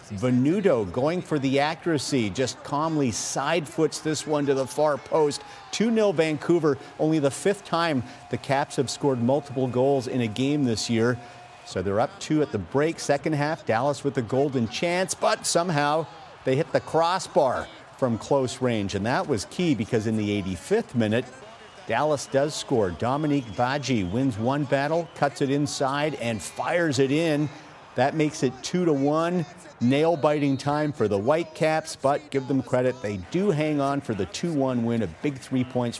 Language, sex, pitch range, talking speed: English, male, 125-155 Hz, 170 wpm